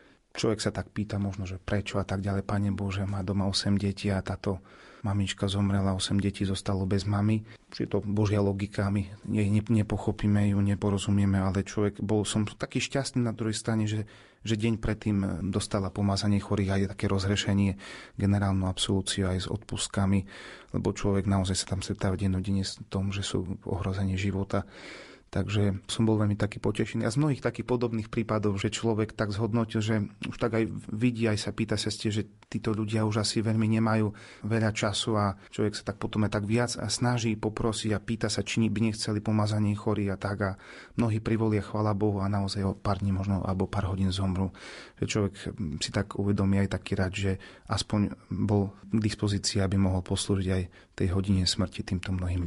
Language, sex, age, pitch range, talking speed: Slovak, male, 30-49, 100-110 Hz, 190 wpm